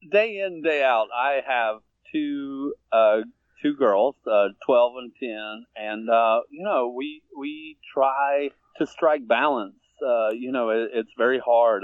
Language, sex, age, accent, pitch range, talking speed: English, male, 30-49, American, 105-140 Hz, 155 wpm